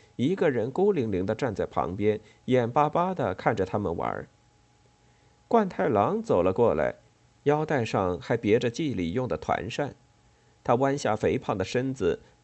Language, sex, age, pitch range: Chinese, male, 50-69, 110-140 Hz